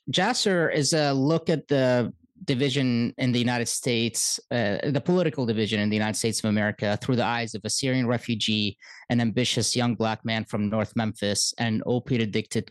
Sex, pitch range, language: male, 115-140 Hz, English